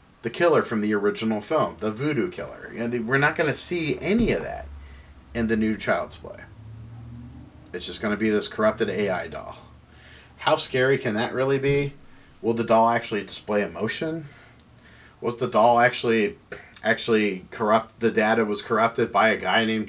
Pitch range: 105-125 Hz